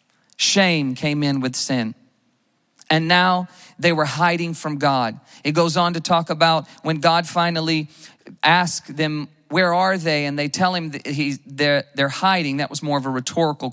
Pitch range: 145-190 Hz